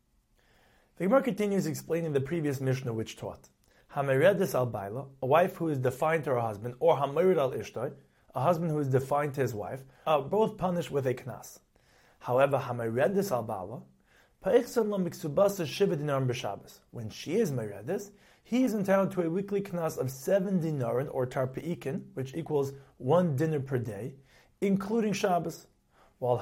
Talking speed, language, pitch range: 145 wpm, English, 130-180 Hz